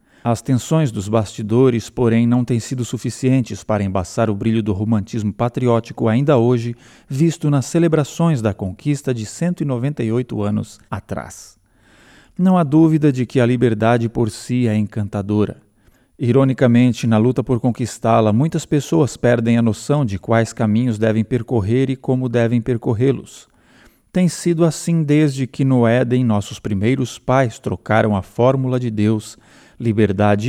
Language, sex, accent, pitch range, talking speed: Portuguese, male, Brazilian, 110-130 Hz, 145 wpm